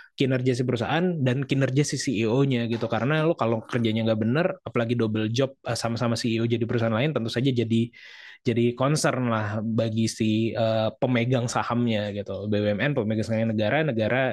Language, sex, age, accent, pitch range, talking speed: Indonesian, male, 20-39, native, 110-130 Hz, 165 wpm